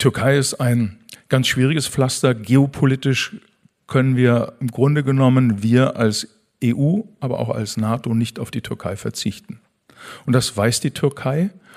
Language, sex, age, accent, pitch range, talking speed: German, male, 50-69, German, 120-145 Hz, 150 wpm